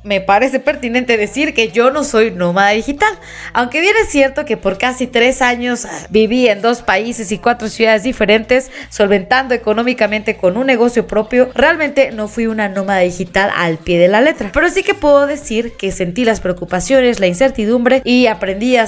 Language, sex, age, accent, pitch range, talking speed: Spanish, female, 20-39, Mexican, 205-265 Hz, 185 wpm